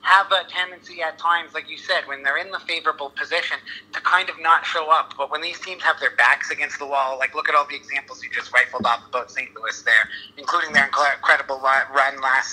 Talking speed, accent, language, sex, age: 235 wpm, American, English, male, 30-49